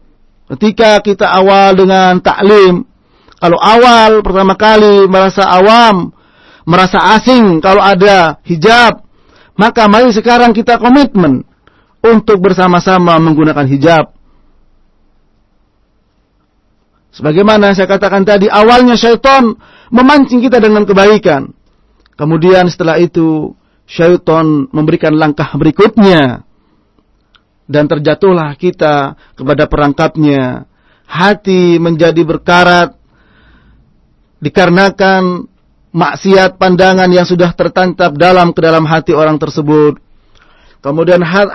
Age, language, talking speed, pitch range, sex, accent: 40-59, English, 90 wpm, 150-200 Hz, male, Indonesian